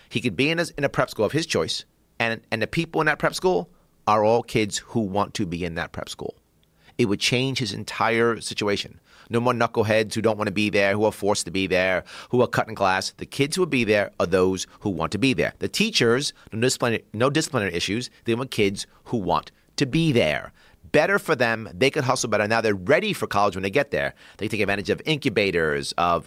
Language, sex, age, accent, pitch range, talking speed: English, male, 30-49, American, 105-150 Hz, 240 wpm